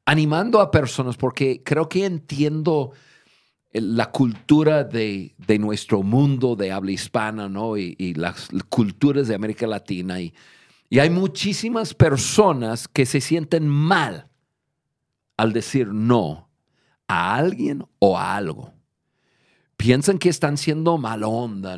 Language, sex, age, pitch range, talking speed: Spanish, male, 50-69, 115-155 Hz, 130 wpm